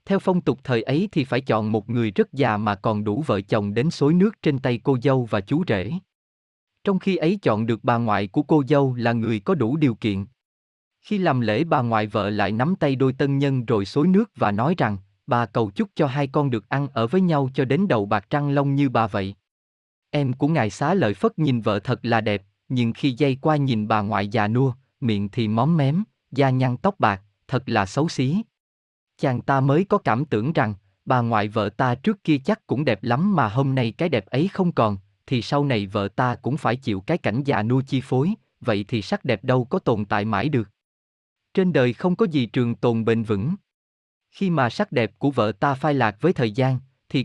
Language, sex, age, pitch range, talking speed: Vietnamese, male, 20-39, 110-150 Hz, 235 wpm